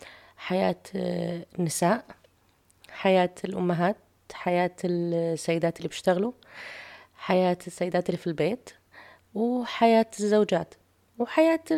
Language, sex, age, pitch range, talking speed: English, female, 30-49, 170-225 Hz, 80 wpm